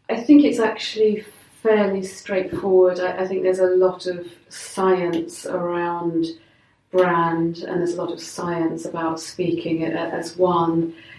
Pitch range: 170-185 Hz